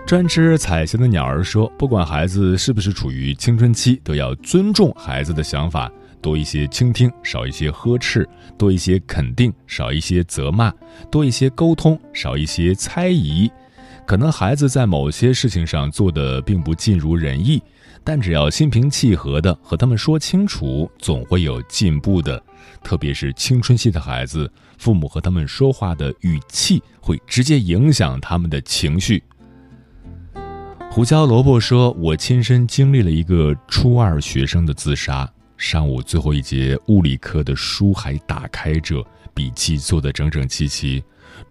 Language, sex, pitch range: Chinese, male, 75-115 Hz